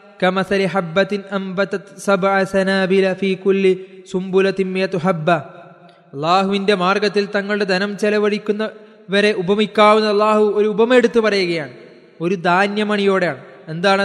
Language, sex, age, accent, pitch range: Malayalam, male, 20-39, native, 170-200 Hz